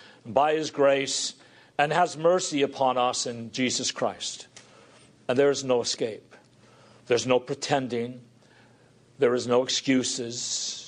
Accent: American